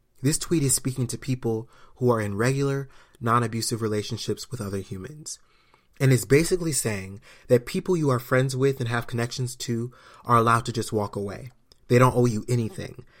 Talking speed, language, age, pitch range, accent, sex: 180 wpm, English, 20-39, 110-130 Hz, American, male